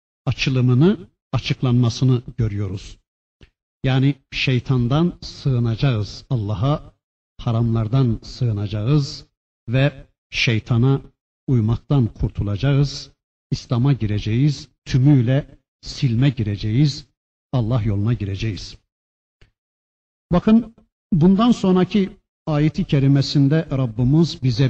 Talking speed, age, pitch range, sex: 70 wpm, 60-79, 115-155 Hz, male